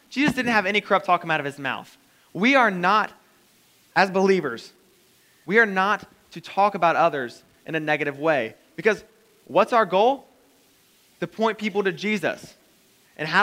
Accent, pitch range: American, 155-205 Hz